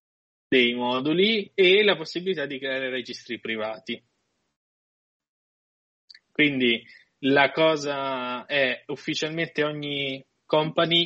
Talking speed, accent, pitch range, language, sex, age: 85 wpm, native, 125-155 Hz, Italian, male, 20-39